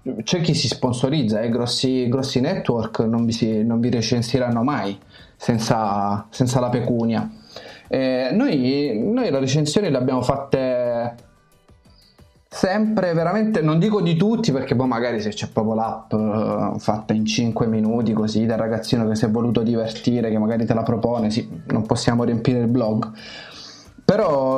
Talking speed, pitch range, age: 160 wpm, 115-150 Hz, 20-39